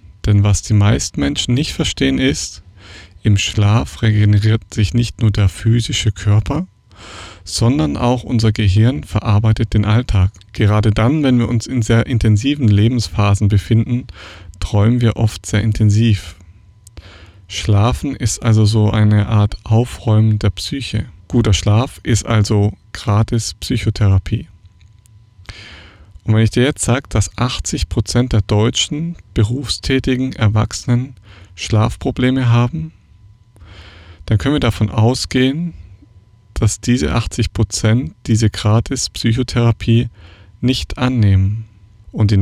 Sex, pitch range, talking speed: male, 100-115 Hz, 115 wpm